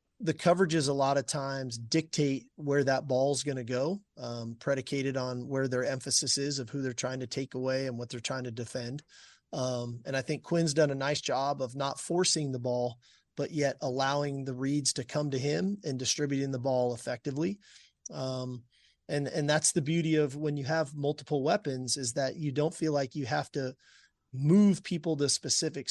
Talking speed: 195 wpm